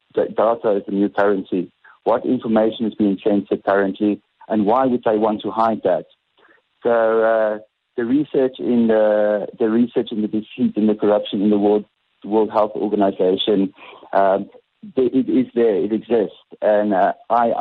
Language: English